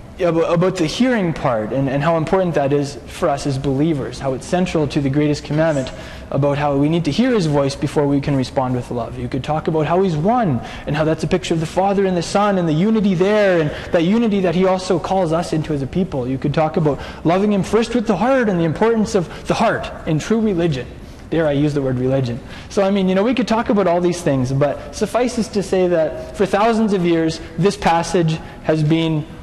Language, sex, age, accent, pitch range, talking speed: English, male, 20-39, American, 140-190 Hz, 245 wpm